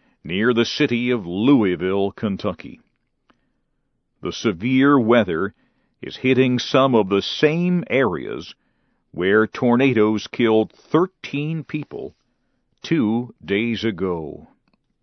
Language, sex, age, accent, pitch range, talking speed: English, male, 50-69, American, 110-155 Hz, 95 wpm